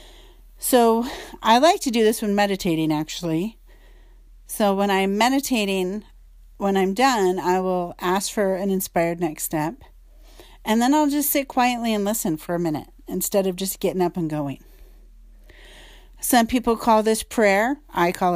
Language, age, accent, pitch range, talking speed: English, 40-59, American, 190-230 Hz, 160 wpm